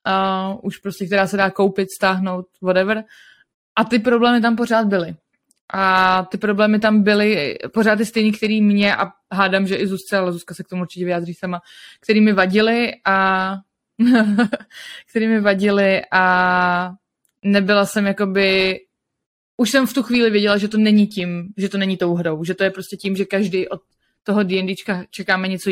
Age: 20-39